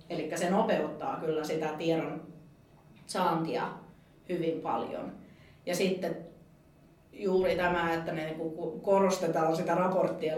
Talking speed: 105 wpm